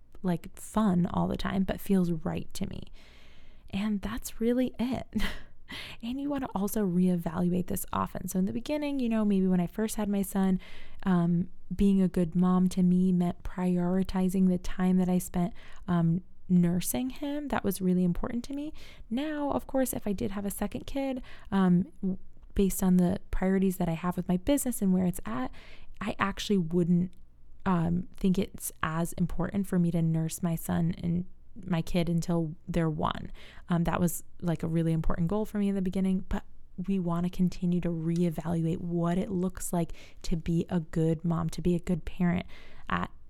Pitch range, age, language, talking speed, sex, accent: 175-200 Hz, 20-39, English, 190 wpm, female, American